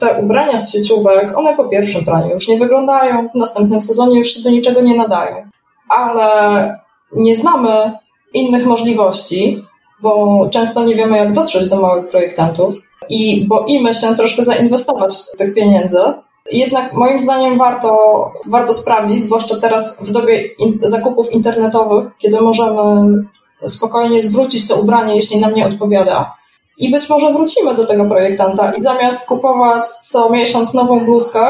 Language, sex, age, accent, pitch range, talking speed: Polish, female, 20-39, native, 215-255 Hz, 150 wpm